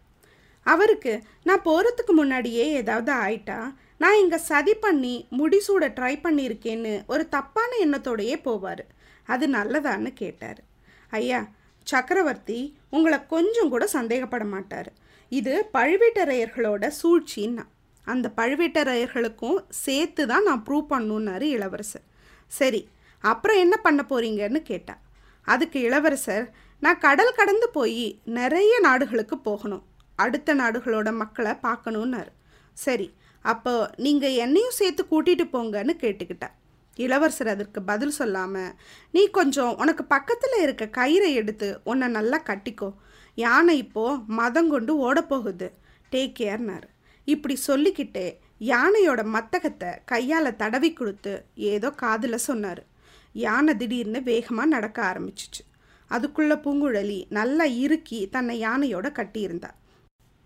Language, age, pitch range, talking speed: Tamil, 20-39, 220-315 Hz, 105 wpm